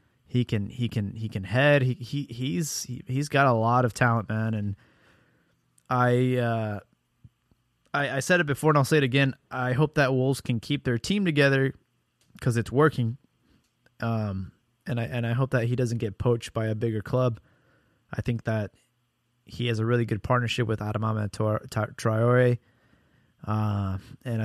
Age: 20-39